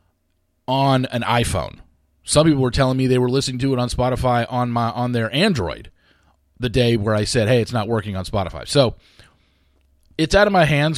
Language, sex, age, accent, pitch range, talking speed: English, male, 30-49, American, 95-140 Hz, 200 wpm